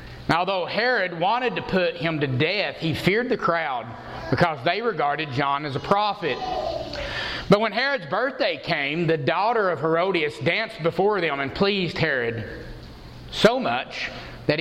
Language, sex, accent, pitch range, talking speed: English, male, American, 145-180 Hz, 150 wpm